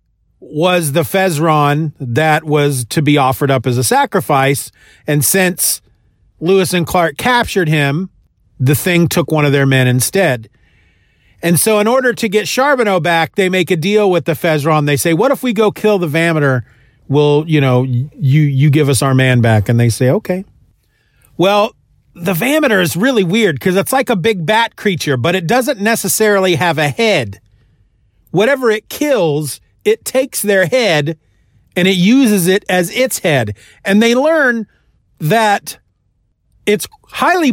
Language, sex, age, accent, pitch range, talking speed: English, male, 40-59, American, 140-210 Hz, 170 wpm